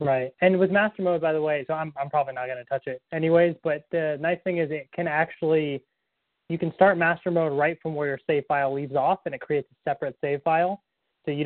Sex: male